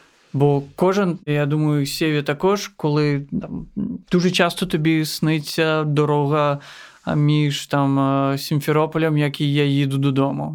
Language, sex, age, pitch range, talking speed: Ukrainian, male, 20-39, 145-170 Hz, 120 wpm